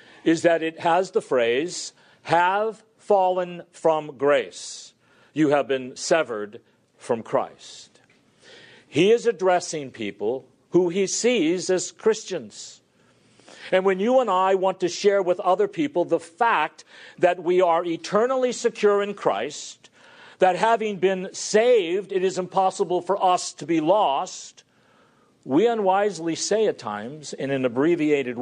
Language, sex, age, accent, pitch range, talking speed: English, male, 50-69, American, 165-220 Hz, 135 wpm